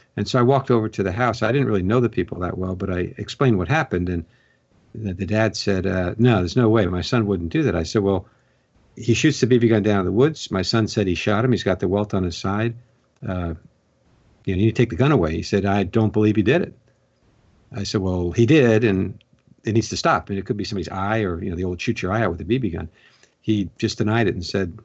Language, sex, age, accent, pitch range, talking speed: English, male, 60-79, American, 95-120 Hz, 280 wpm